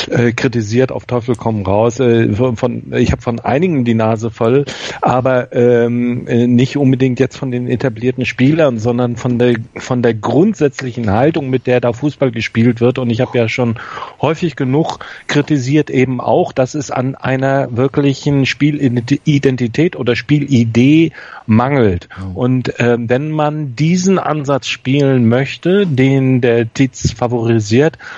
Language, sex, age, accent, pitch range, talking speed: German, male, 40-59, German, 120-140 Hz, 135 wpm